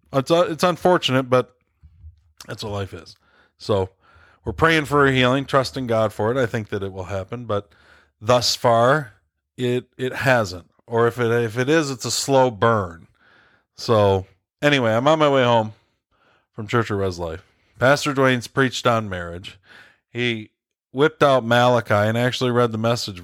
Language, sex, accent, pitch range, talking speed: English, male, American, 95-125 Hz, 175 wpm